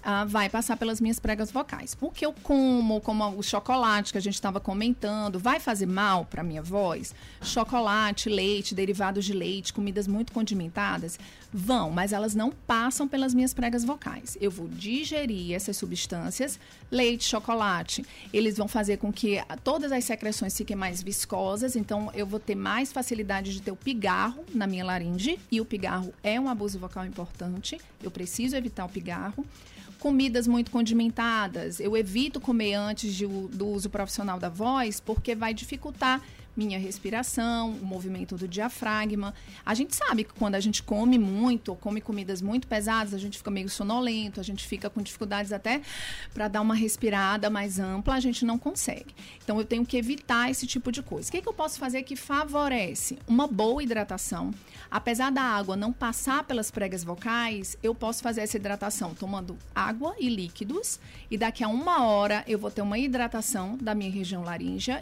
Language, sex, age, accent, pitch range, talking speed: Portuguese, female, 40-59, Brazilian, 200-245 Hz, 175 wpm